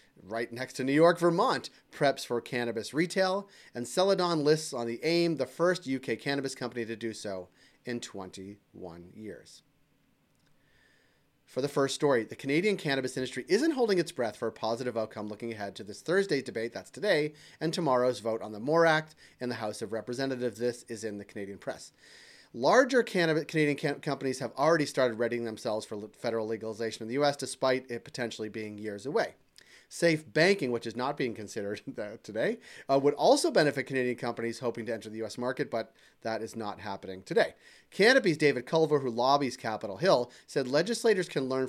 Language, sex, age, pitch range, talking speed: English, male, 30-49, 115-150 Hz, 185 wpm